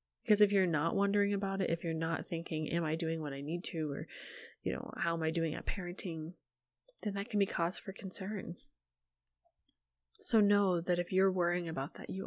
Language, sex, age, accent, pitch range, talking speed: English, female, 20-39, American, 175-215 Hz, 210 wpm